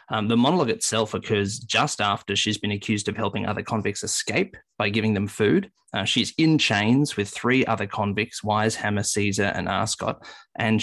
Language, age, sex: English, 20-39, male